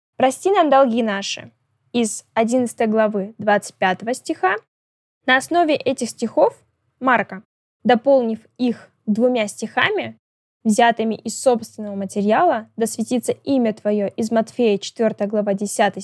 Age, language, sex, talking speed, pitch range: 10-29, Russian, female, 110 wpm, 210-255 Hz